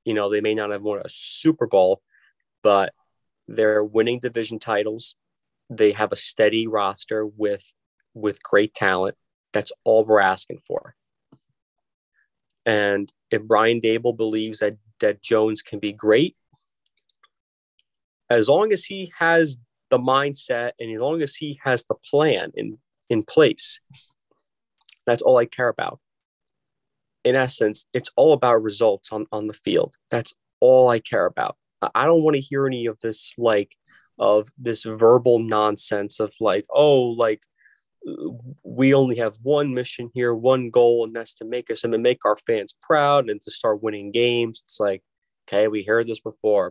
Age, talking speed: 30-49, 160 wpm